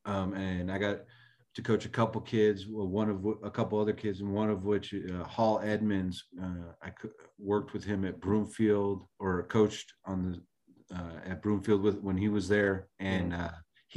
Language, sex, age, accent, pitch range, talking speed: English, male, 40-59, American, 100-115 Hz, 190 wpm